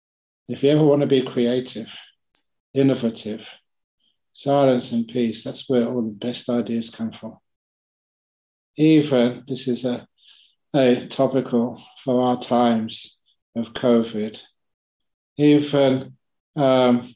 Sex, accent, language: male, British, English